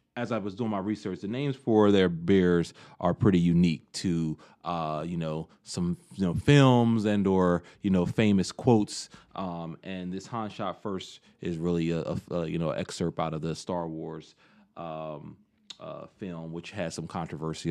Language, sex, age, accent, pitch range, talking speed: English, male, 30-49, American, 85-110 Hz, 180 wpm